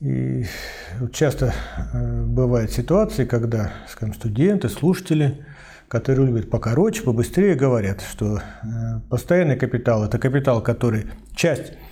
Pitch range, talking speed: 95-160 Hz, 95 wpm